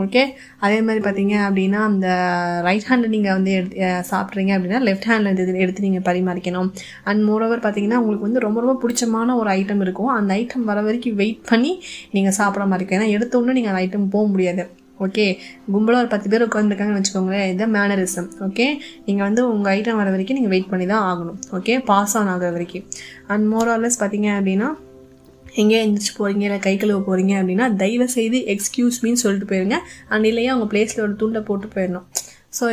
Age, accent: 20-39, native